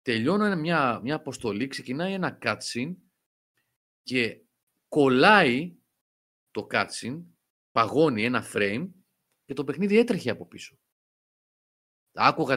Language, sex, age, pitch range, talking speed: Greek, male, 30-49, 105-165 Hz, 100 wpm